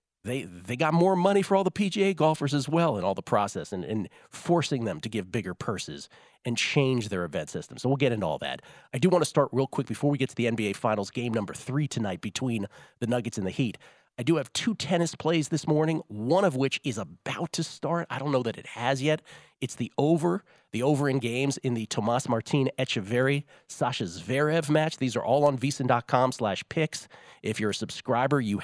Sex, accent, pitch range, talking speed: male, American, 115-150 Hz, 225 wpm